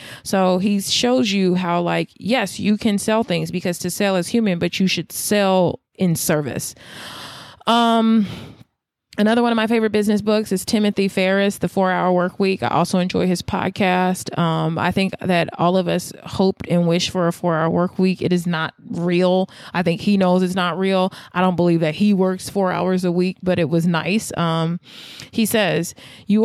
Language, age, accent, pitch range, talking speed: English, 20-39, American, 170-200 Hz, 200 wpm